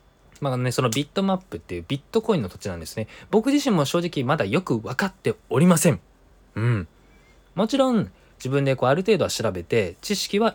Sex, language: male, Japanese